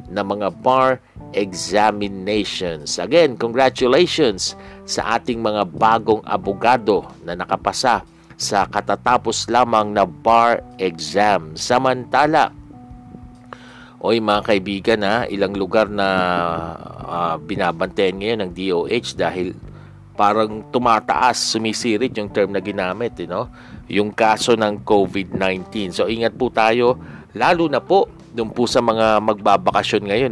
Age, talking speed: 50-69, 115 wpm